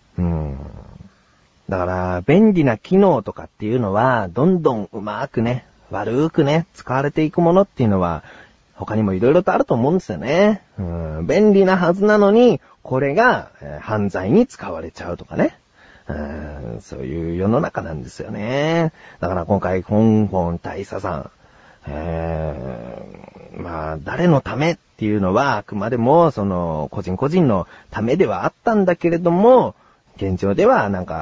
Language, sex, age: Japanese, male, 40-59